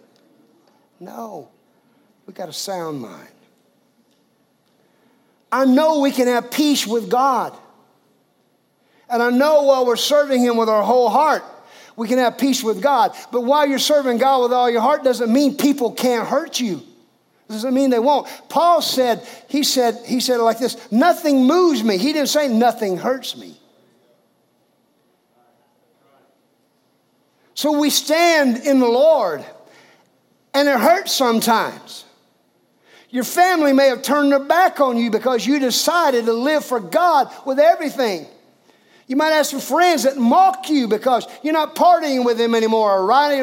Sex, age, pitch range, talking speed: male, 50-69, 230-290 Hz, 155 wpm